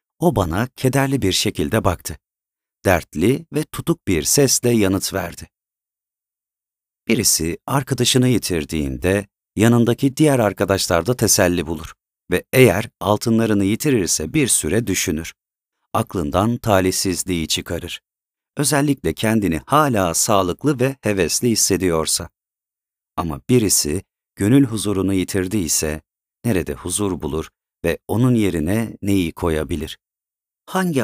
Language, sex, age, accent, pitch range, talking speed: Turkish, male, 40-59, native, 95-125 Hz, 100 wpm